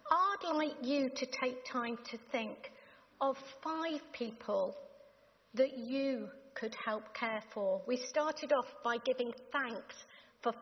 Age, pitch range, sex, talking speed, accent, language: 50-69, 230-290 Hz, female, 135 wpm, British, English